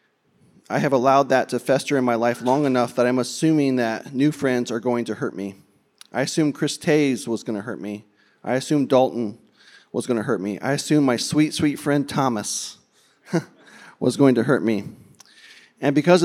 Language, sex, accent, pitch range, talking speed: English, male, American, 120-145 Hz, 195 wpm